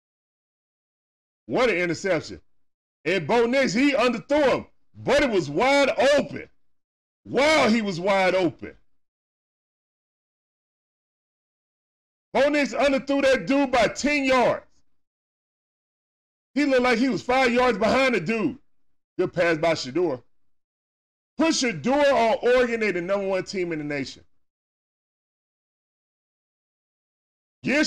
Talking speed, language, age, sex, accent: 115 wpm, English, 40-59, male, American